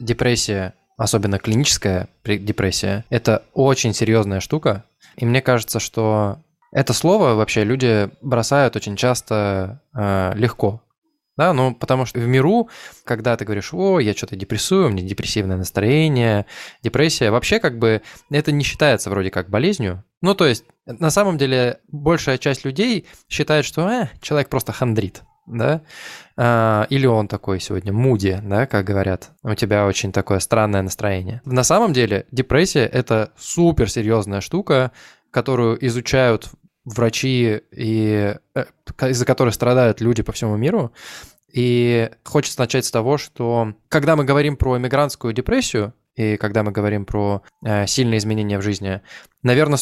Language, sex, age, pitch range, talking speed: Russian, male, 20-39, 105-135 Hz, 145 wpm